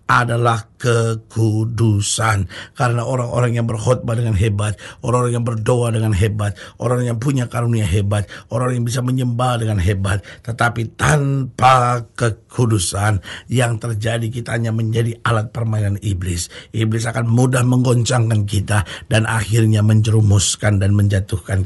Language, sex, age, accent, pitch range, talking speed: Indonesian, male, 50-69, native, 105-120 Hz, 125 wpm